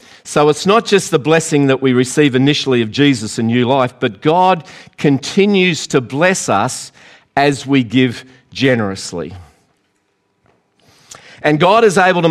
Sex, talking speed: male, 145 wpm